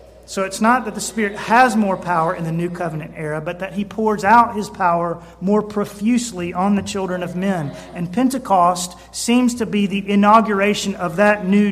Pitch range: 160-200 Hz